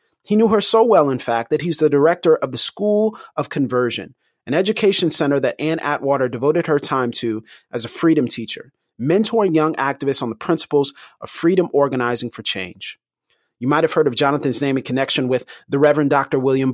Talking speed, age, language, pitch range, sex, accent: 195 wpm, 30-49, English, 130-175 Hz, male, American